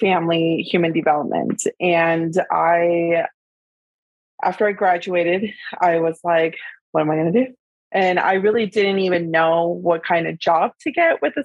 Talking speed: 165 wpm